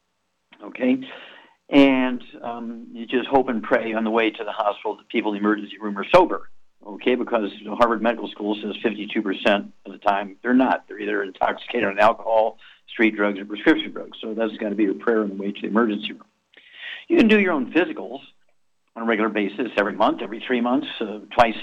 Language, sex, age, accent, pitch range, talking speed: English, male, 50-69, American, 105-120 Hz, 210 wpm